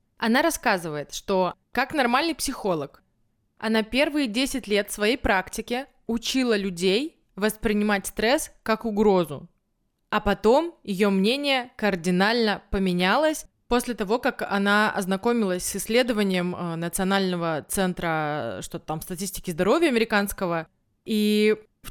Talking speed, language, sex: 110 wpm, Russian, female